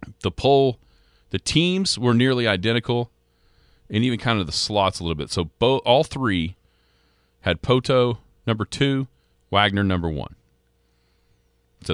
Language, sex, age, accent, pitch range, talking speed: English, male, 40-59, American, 80-120 Hz, 140 wpm